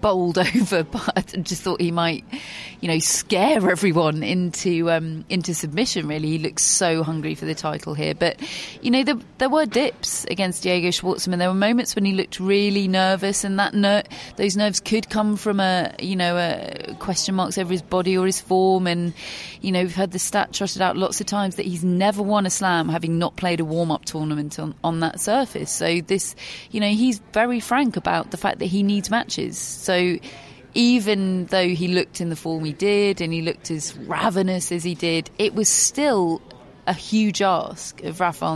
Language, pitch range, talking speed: English, 165-200 Hz, 205 wpm